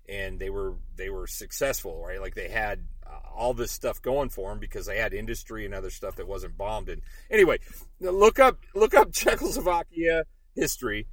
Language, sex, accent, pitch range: English, male, American, 120-160 Hz